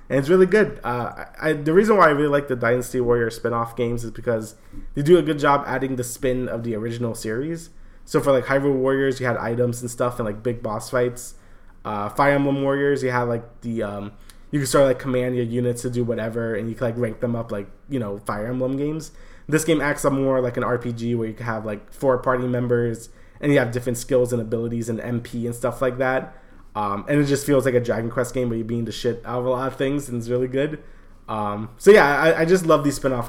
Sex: male